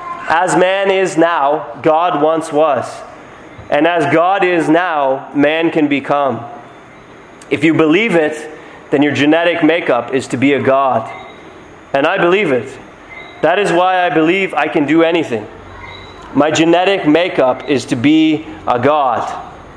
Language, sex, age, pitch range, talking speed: English, male, 30-49, 140-175 Hz, 150 wpm